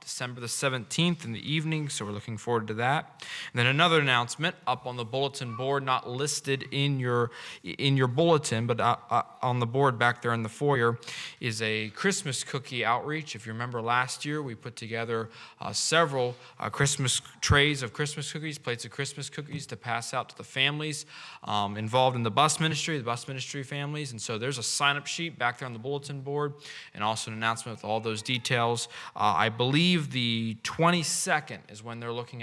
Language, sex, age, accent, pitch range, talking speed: English, male, 20-39, American, 115-145 Hz, 200 wpm